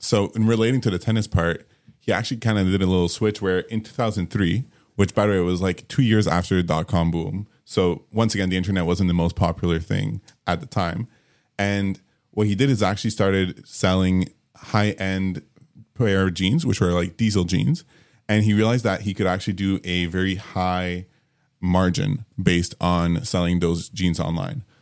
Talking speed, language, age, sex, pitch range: 185 wpm, English, 20-39, male, 90-115 Hz